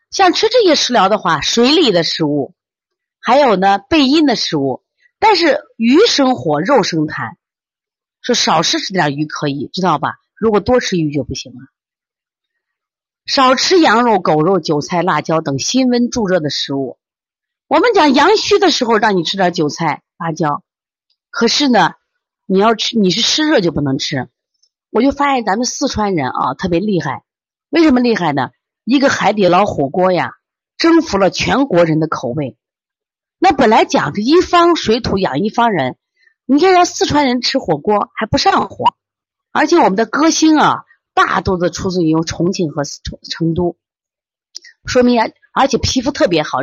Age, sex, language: 30-49, female, Chinese